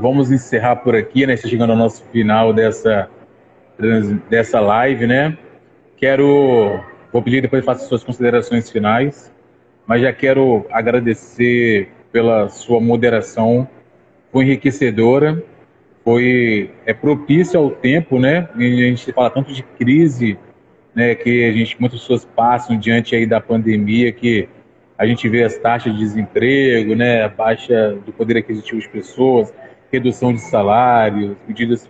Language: Portuguese